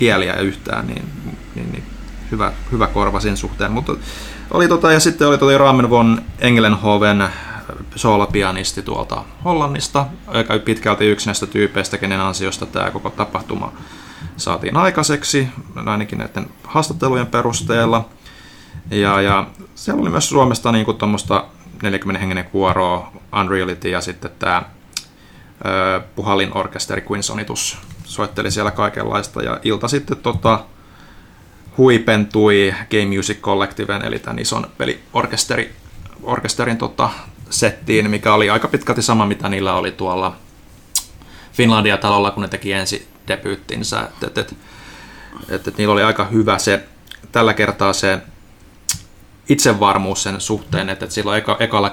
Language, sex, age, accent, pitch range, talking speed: Finnish, male, 30-49, native, 95-115 Hz, 125 wpm